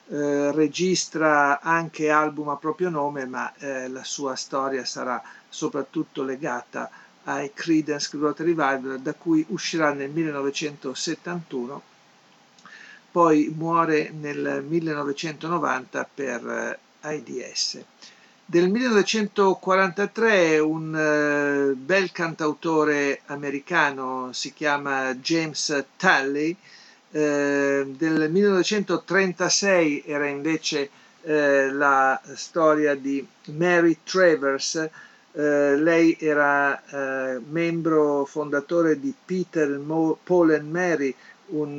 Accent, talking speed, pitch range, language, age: native, 95 wpm, 140-165 Hz, Italian, 50-69